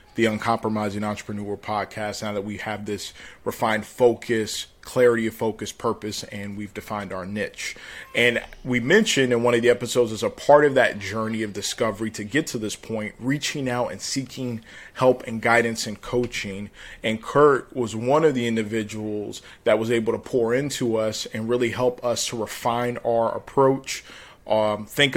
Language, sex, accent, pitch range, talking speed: English, male, American, 110-125 Hz, 175 wpm